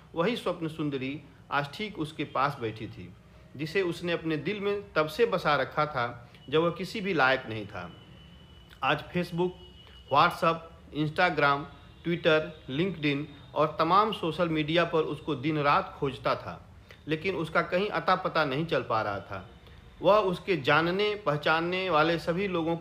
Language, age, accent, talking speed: Hindi, 50-69, native, 155 wpm